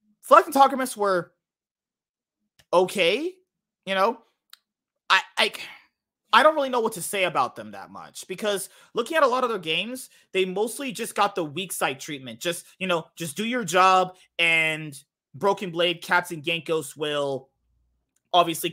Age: 30-49